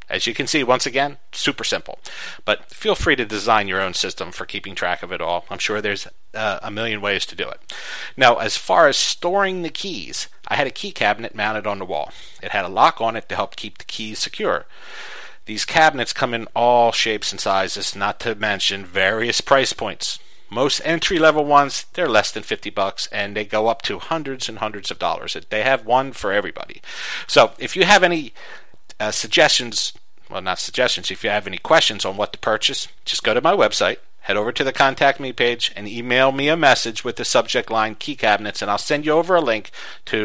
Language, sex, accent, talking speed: English, male, American, 220 wpm